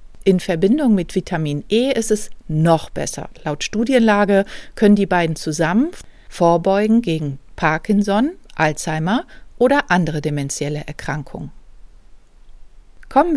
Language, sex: German, female